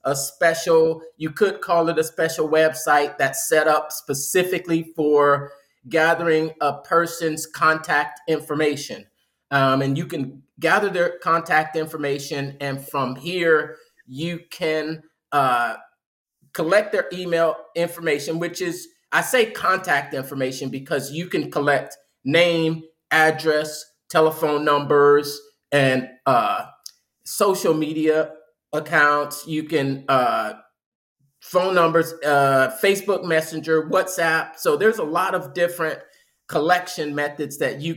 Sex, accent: male, American